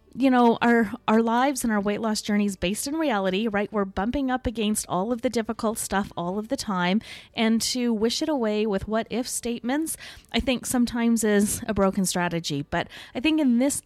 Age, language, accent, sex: 20-39, English, American, female